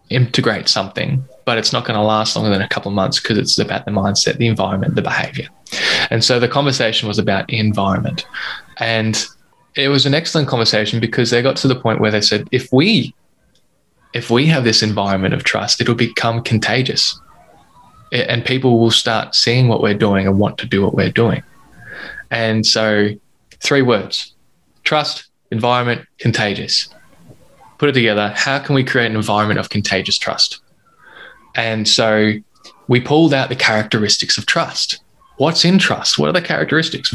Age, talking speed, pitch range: 10-29, 175 wpm, 105-130 Hz